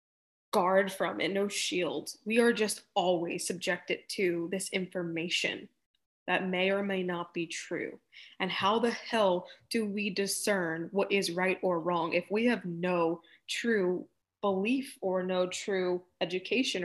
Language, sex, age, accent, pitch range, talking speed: English, female, 20-39, American, 185-230 Hz, 150 wpm